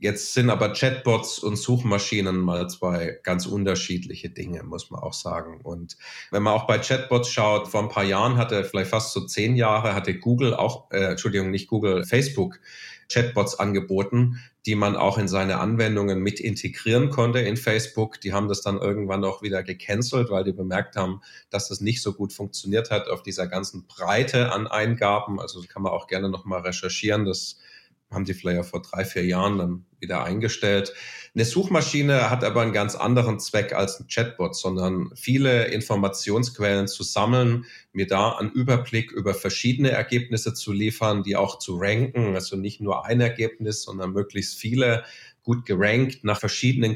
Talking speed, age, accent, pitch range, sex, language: 175 wpm, 40-59, German, 100-120 Hz, male, German